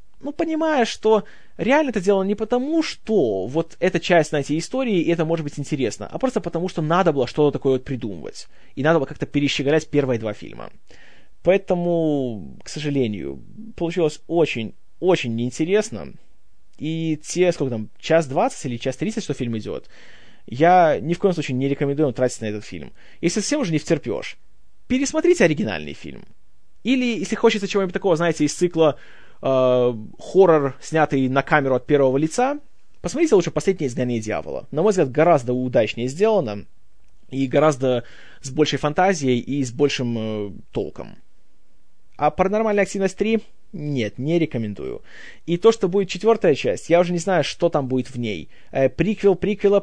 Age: 20-39